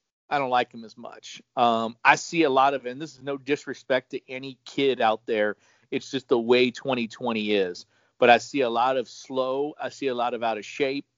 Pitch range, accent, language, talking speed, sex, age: 110-140 Hz, American, English, 230 wpm, male, 40-59